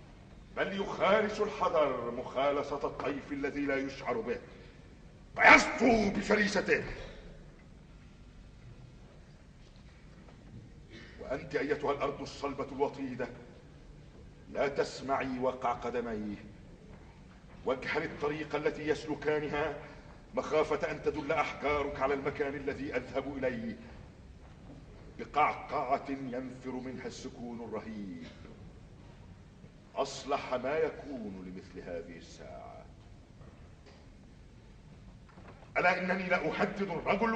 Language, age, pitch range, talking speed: Arabic, 50-69, 125-180 Hz, 80 wpm